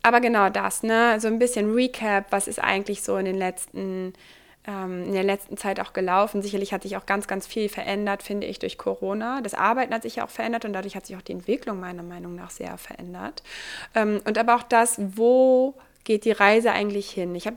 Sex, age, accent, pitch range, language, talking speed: female, 20-39, German, 185-220 Hz, German, 225 wpm